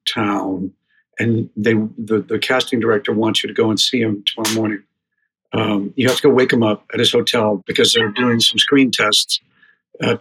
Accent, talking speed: American, 200 wpm